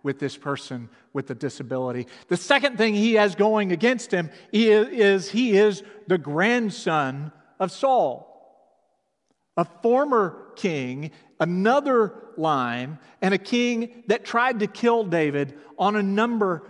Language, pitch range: English, 130-200 Hz